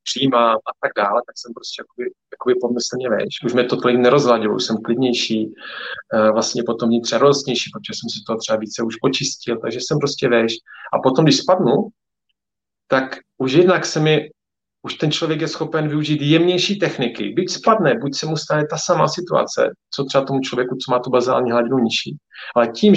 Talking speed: 185 wpm